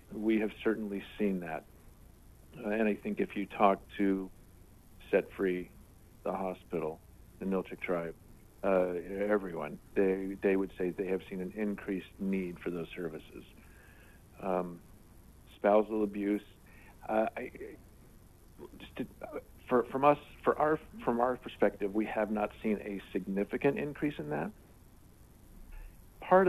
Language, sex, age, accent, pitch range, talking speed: English, male, 50-69, American, 95-105 Hz, 140 wpm